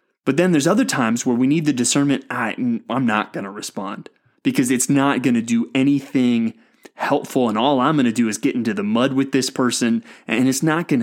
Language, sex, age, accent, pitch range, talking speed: English, male, 20-39, American, 125-175 Hz, 230 wpm